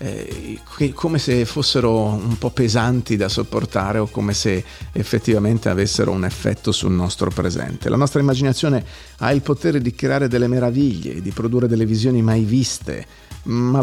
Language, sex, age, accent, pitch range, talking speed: Italian, male, 40-59, native, 105-130 Hz, 155 wpm